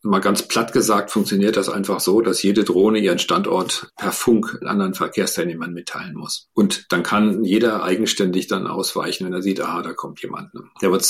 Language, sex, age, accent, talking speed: German, male, 50-69, German, 195 wpm